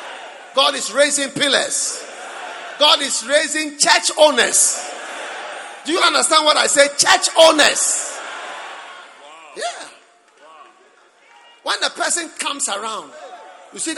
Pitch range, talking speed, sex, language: 275-340 Hz, 105 wpm, male, English